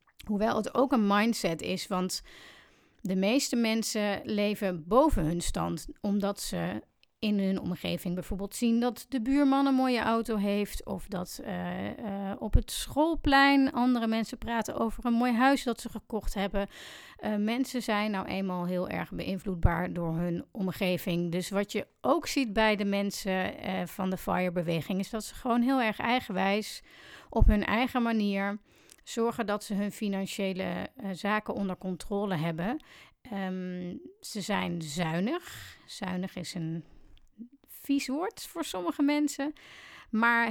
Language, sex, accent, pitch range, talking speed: Dutch, female, Dutch, 195-245 Hz, 150 wpm